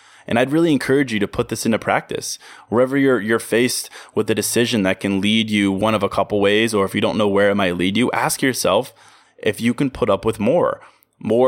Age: 20-39